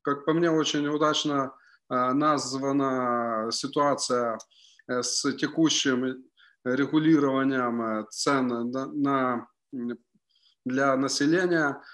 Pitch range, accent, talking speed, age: 140-180 Hz, native, 65 wpm, 30-49